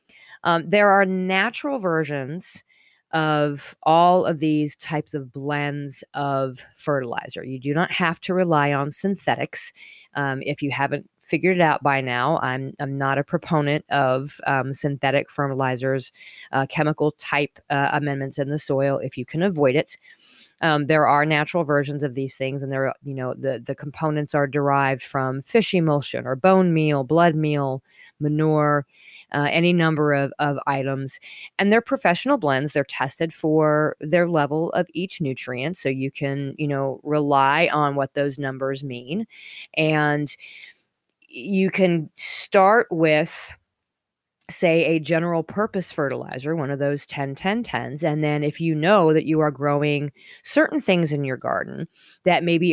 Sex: female